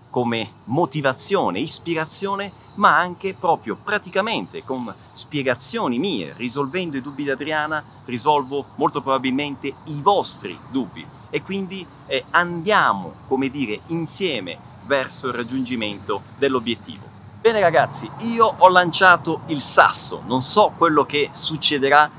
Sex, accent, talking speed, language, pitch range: male, native, 115 wpm, Italian, 135-180 Hz